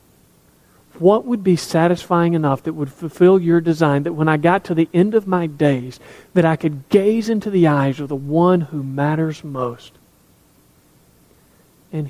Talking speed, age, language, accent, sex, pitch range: 170 wpm, 40-59, English, American, male, 140-180 Hz